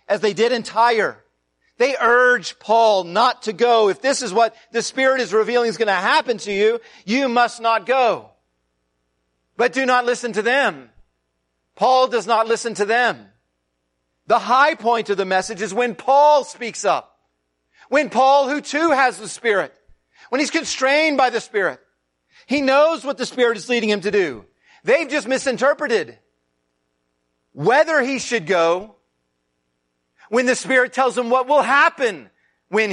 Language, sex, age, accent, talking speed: English, male, 40-59, American, 165 wpm